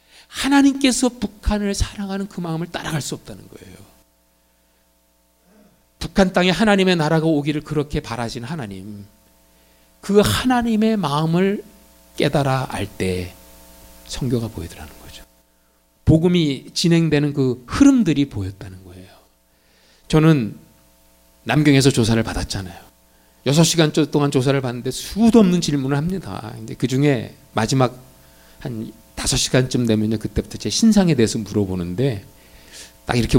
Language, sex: Korean, male